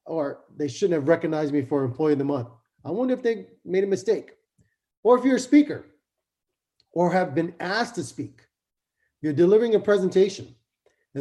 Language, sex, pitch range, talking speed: English, male, 155-205 Hz, 180 wpm